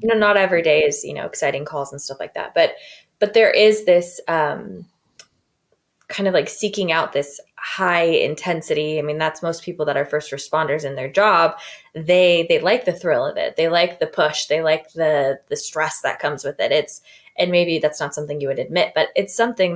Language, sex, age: English, female, 20-39